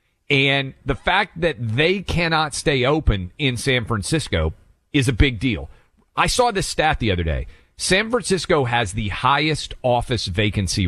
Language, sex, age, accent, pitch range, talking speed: English, male, 40-59, American, 95-155 Hz, 160 wpm